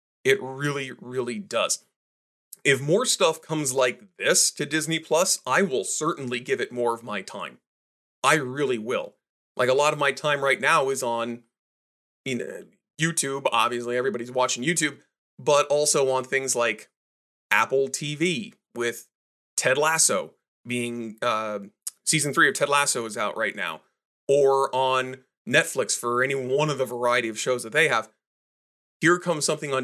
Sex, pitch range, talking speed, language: male, 120-155 Hz, 165 wpm, English